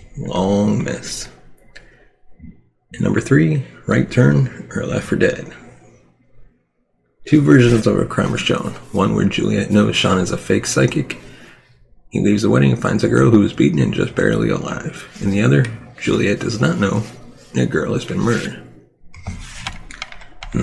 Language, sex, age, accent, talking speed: English, male, 40-59, American, 160 wpm